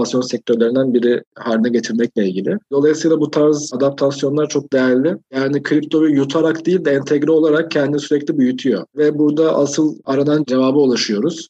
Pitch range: 120-150 Hz